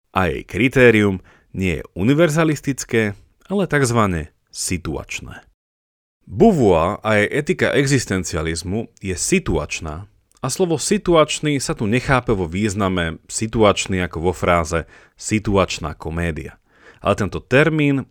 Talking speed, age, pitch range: 110 wpm, 30-49, 90-135 Hz